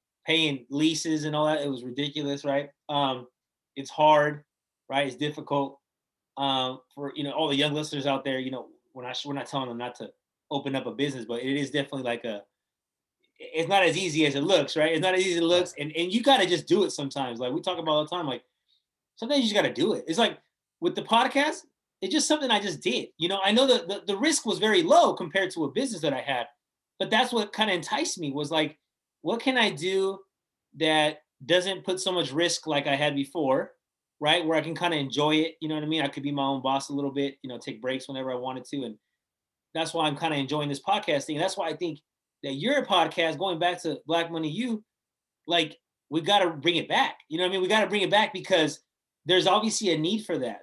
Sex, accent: male, American